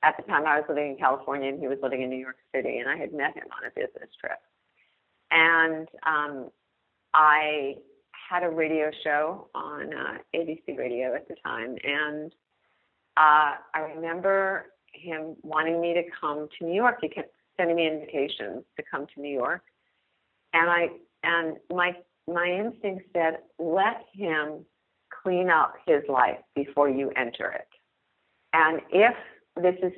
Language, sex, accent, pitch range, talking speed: English, female, American, 140-175 Hz, 165 wpm